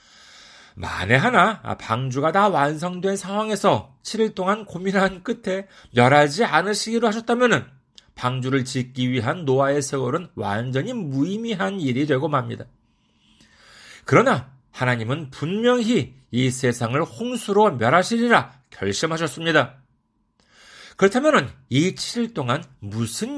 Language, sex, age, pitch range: Korean, male, 40-59, 130-200 Hz